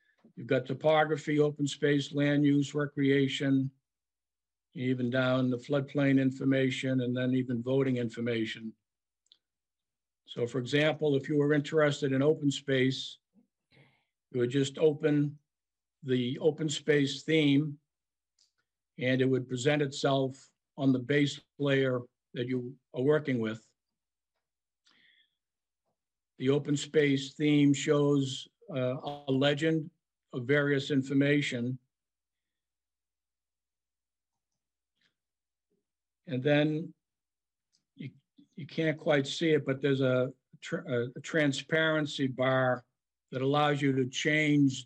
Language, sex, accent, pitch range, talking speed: English, male, American, 125-145 Hz, 110 wpm